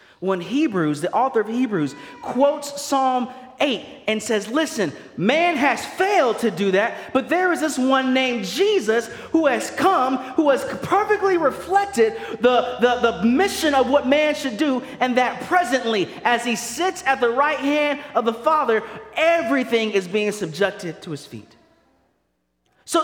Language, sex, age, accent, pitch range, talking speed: English, male, 30-49, American, 235-315 Hz, 160 wpm